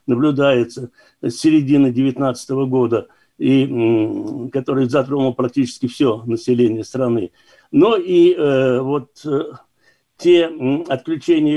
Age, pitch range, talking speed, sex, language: 60-79, 125-155 Hz, 95 wpm, male, Russian